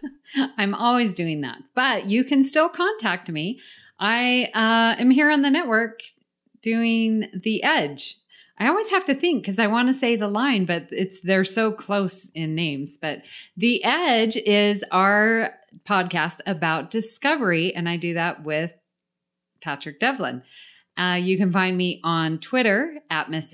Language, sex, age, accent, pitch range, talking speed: English, female, 30-49, American, 160-225 Hz, 160 wpm